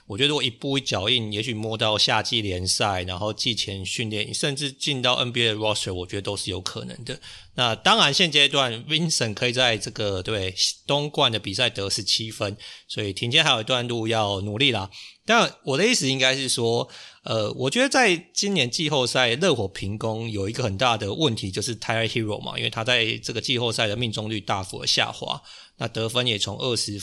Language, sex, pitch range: Chinese, male, 105-145 Hz